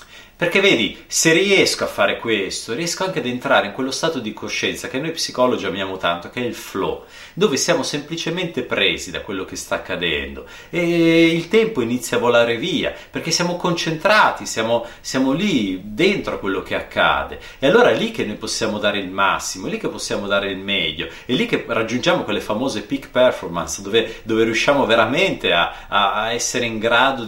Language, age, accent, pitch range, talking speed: Italian, 30-49, native, 105-170 Hz, 190 wpm